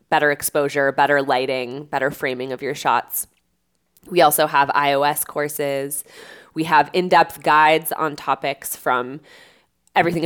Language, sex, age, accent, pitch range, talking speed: English, female, 20-39, American, 145-185 Hz, 130 wpm